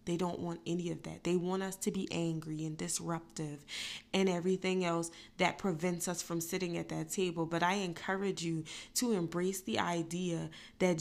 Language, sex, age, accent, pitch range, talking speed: English, female, 20-39, American, 170-195 Hz, 185 wpm